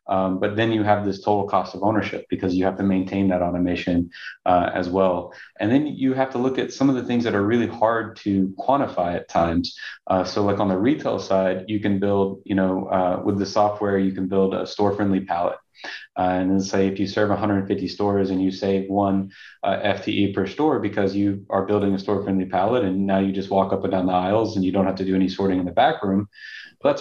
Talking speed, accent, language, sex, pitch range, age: 240 wpm, American, English, male, 95-105 Hz, 30-49